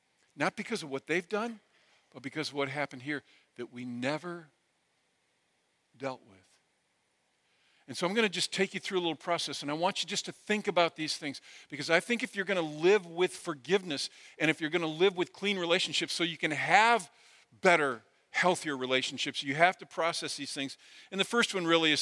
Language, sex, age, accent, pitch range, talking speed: English, male, 50-69, American, 145-185 Hz, 210 wpm